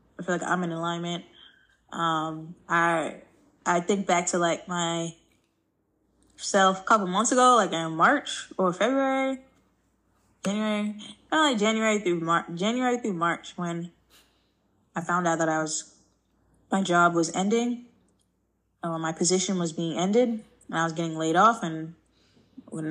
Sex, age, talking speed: female, 10-29, 155 wpm